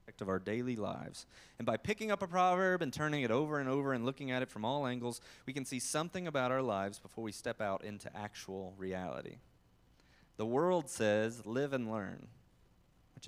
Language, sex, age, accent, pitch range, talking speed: English, male, 20-39, American, 105-140 Hz, 200 wpm